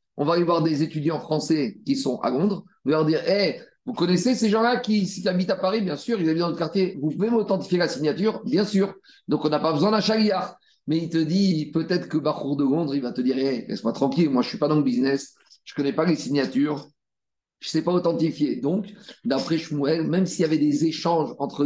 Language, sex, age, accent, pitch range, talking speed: French, male, 50-69, French, 145-180 Hz, 250 wpm